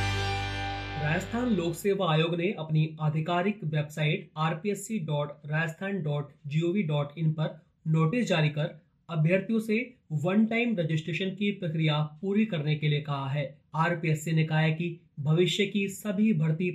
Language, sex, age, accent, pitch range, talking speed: Hindi, male, 30-49, native, 155-185 Hz, 145 wpm